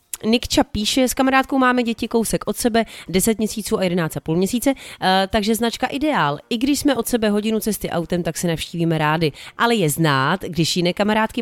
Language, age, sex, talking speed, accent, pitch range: Czech, 30-49, female, 185 wpm, native, 170-210 Hz